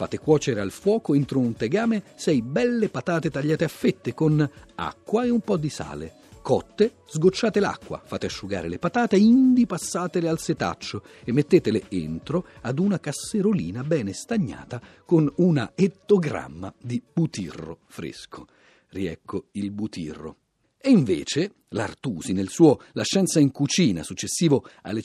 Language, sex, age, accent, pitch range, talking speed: Italian, male, 40-59, native, 125-200 Hz, 140 wpm